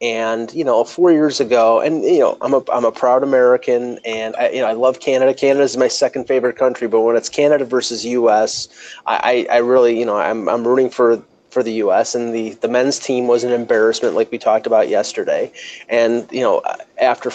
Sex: male